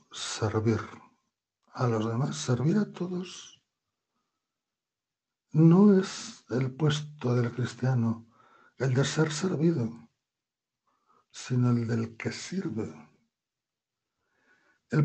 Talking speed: 90 wpm